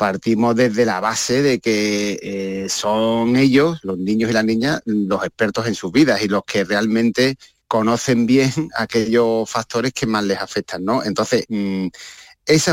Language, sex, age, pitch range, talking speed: Spanish, male, 40-59, 105-125 Hz, 165 wpm